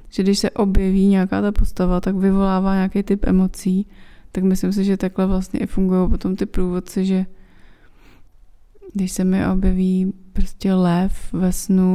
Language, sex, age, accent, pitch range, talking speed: Czech, female, 20-39, native, 180-195 Hz, 160 wpm